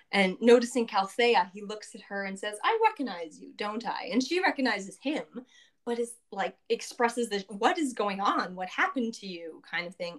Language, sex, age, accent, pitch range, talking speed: English, female, 20-39, American, 195-270 Hz, 200 wpm